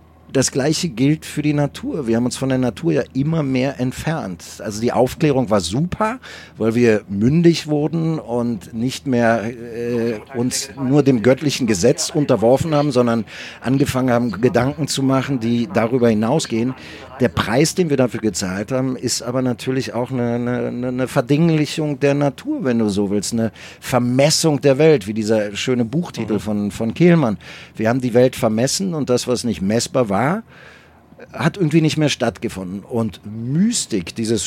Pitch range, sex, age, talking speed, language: 110-140 Hz, male, 40-59, 165 wpm, German